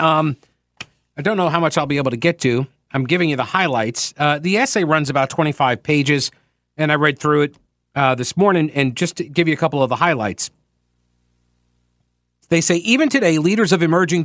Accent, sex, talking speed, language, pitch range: American, male, 205 wpm, English, 125-175 Hz